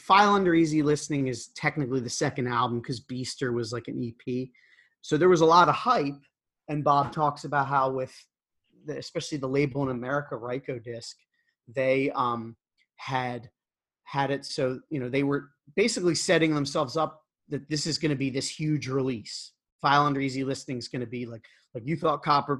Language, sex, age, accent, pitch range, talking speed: English, male, 30-49, American, 125-155 Hz, 190 wpm